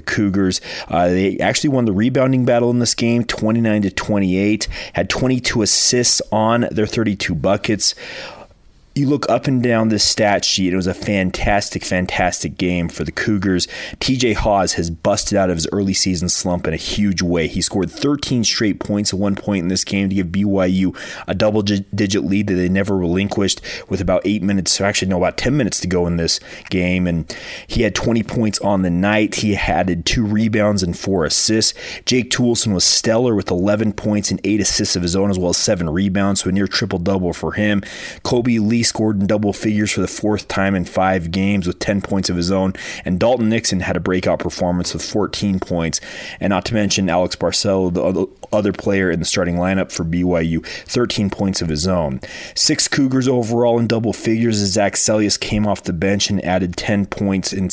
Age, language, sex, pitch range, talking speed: 30-49, English, male, 90-110 Hz, 205 wpm